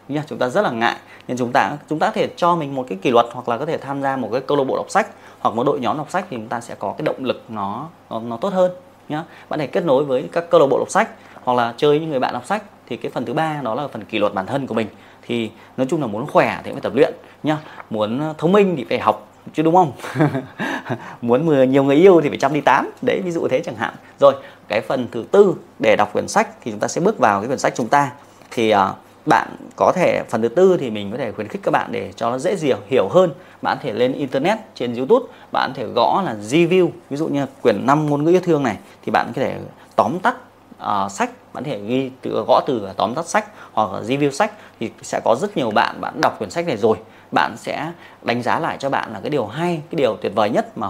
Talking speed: 275 wpm